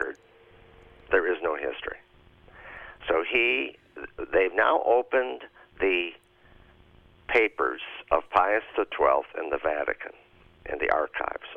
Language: English